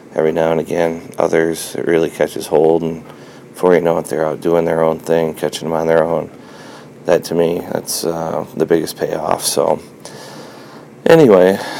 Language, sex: English, male